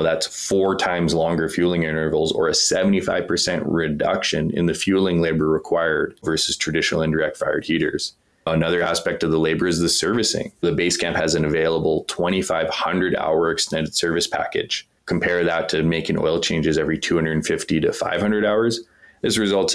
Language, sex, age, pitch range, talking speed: English, male, 20-39, 80-90 Hz, 160 wpm